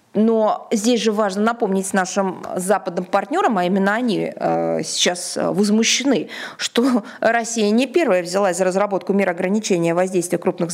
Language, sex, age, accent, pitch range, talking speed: Russian, female, 20-39, native, 180-230 Hz, 140 wpm